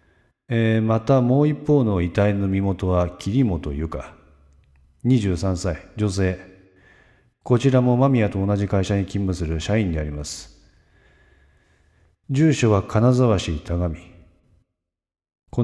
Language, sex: Japanese, male